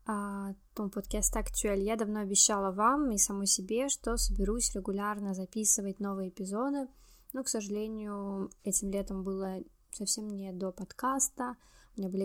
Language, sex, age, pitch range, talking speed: Russian, female, 10-29, 200-230 Hz, 140 wpm